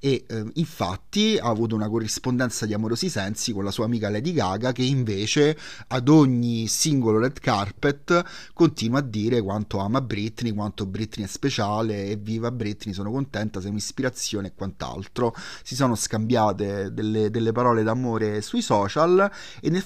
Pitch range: 105-125 Hz